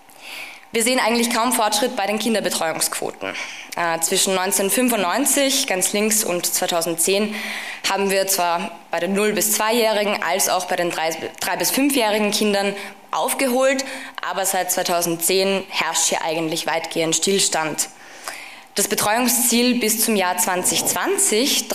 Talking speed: 125 wpm